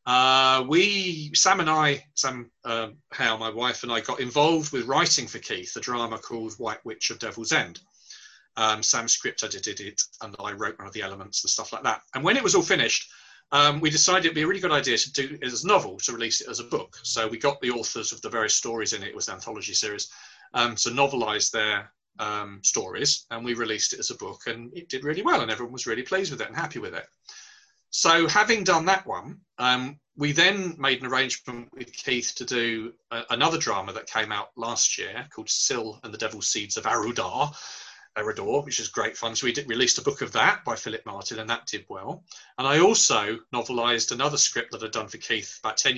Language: English